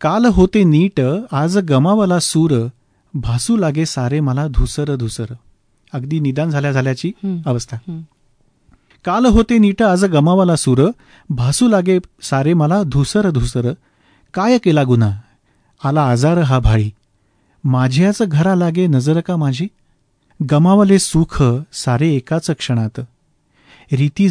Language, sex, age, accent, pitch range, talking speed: Marathi, male, 40-59, native, 130-180 Hz, 115 wpm